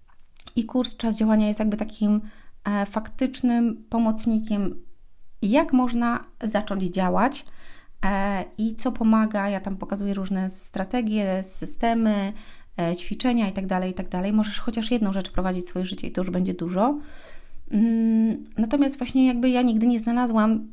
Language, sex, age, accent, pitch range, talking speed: Polish, female, 30-49, native, 195-245 Hz, 130 wpm